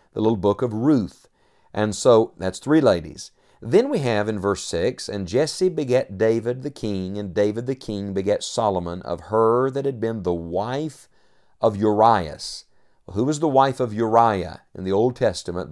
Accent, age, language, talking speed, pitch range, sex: American, 50-69, English, 180 wpm, 100-125 Hz, male